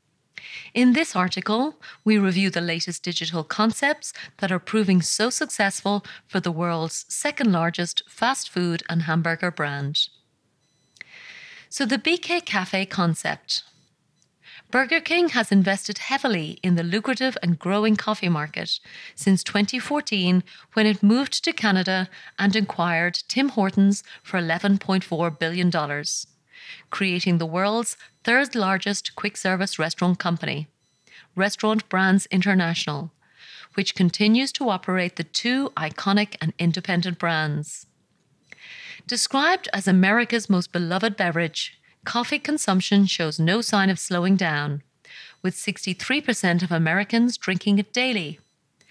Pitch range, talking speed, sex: 170-220 Hz, 120 wpm, female